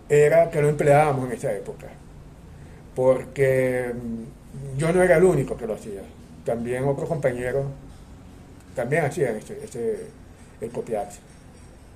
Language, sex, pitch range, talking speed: English, male, 110-170 Hz, 115 wpm